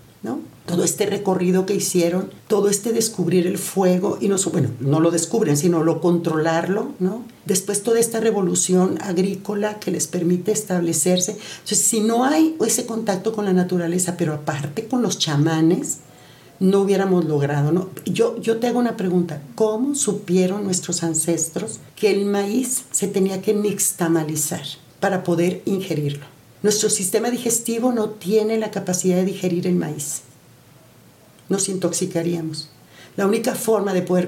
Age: 50-69